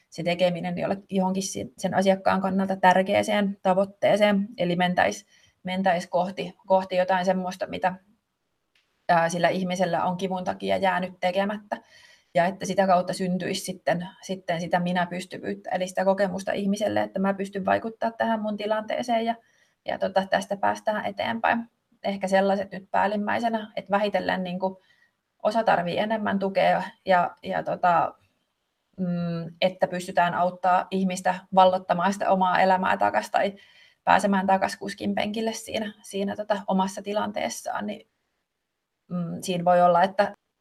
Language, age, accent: Finnish, 30-49, native